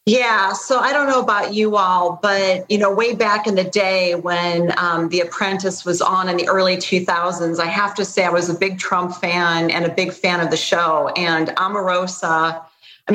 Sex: female